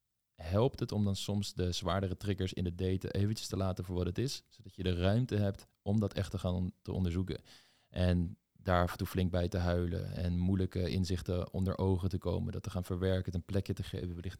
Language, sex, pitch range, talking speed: Dutch, male, 90-105 Hz, 235 wpm